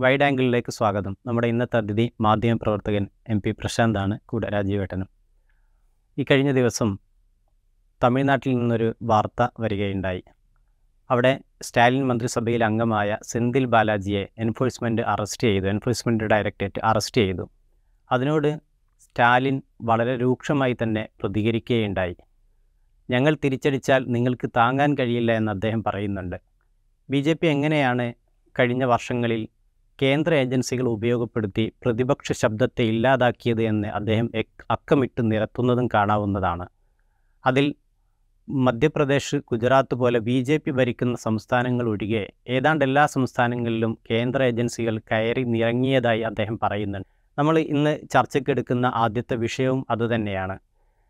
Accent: native